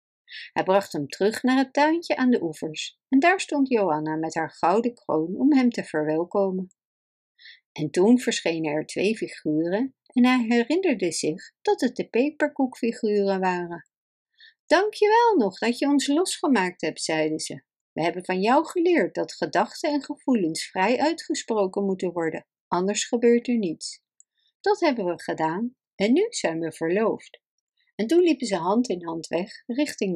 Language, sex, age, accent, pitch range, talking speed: Dutch, female, 50-69, Dutch, 170-275 Hz, 165 wpm